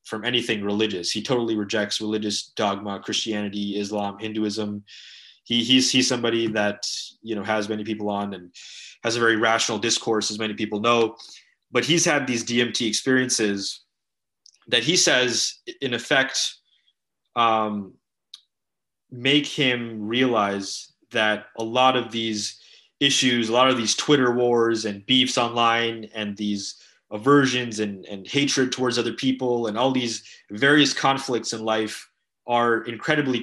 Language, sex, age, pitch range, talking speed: English, male, 20-39, 105-120 Hz, 145 wpm